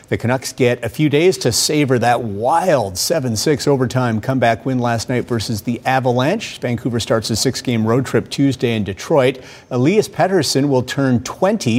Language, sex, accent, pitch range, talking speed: English, male, American, 120-155 Hz, 170 wpm